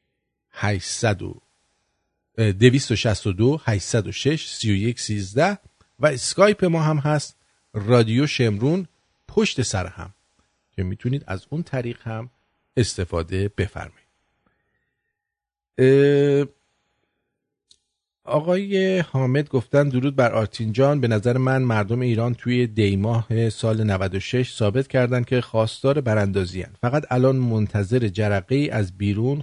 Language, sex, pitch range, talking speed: English, male, 100-130 Hz, 115 wpm